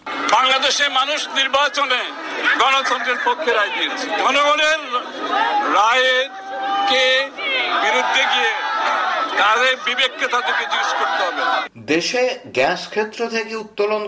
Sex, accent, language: male, native, Bengali